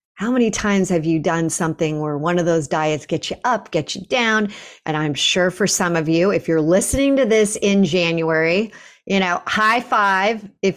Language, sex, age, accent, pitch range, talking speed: English, female, 40-59, American, 165-215 Hz, 205 wpm